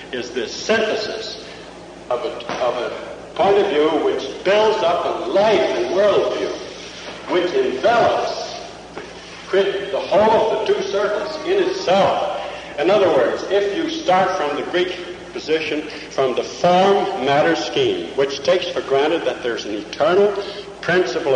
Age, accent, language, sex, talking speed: 60-79, American, English, male, 140 wpm